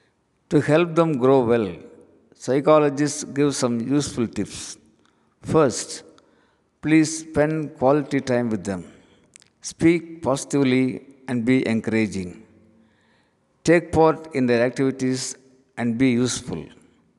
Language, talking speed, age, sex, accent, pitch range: Tamil, 105 wpm, 60-79, male, native, 115-145 Hz